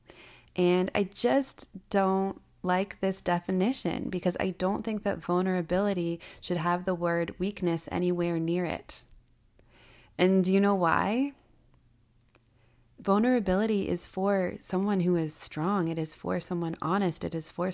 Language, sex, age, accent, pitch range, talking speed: English, female, 20-39, American, 160-190 Hz, 140 wpm